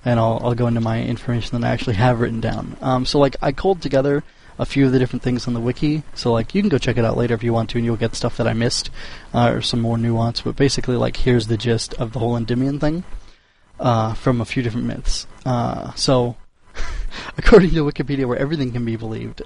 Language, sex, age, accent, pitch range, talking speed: English, male, 20-39, American, 120-135 Hz, 245 wpm